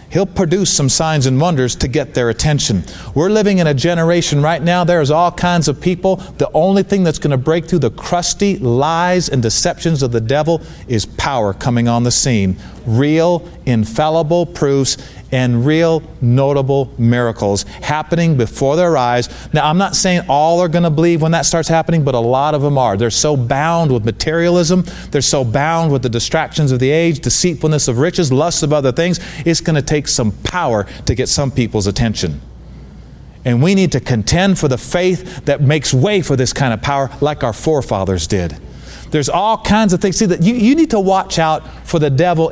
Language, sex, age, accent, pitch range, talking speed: English, male, 40-59, American, 120-170 Hz, 200 wpm